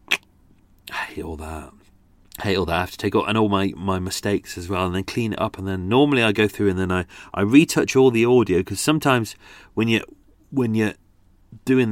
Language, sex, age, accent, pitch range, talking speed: English, male, 30-49, British, 95-115 Hz, 230 wpm